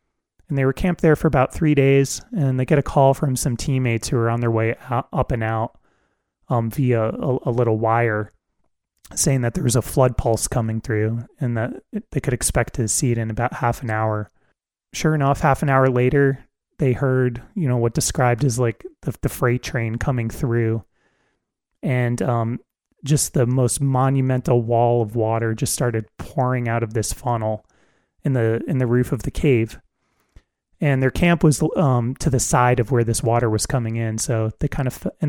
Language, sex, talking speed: English, male, 200 wpm